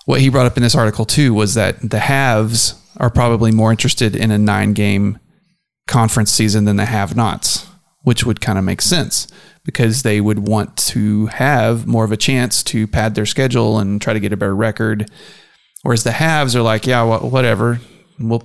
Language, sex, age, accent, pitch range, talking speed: English, male, 30-49, American, 105-130 Hz, 200 wpm